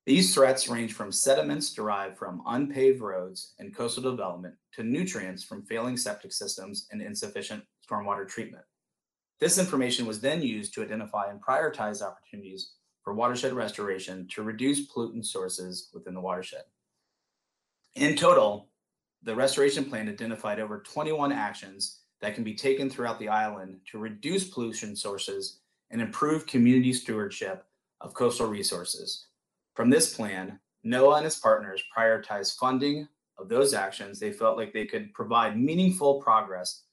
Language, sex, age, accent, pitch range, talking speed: English, male, 30-49, American, 110-140 Hz, 145 wpm